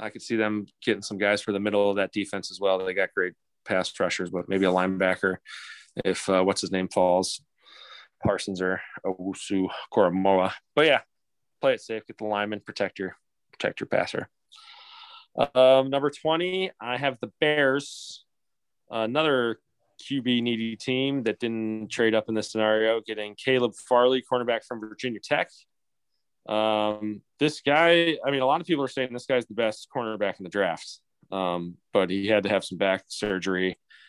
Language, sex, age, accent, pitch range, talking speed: English, male, 20-39, American, 95-125 Hz, 175 wpm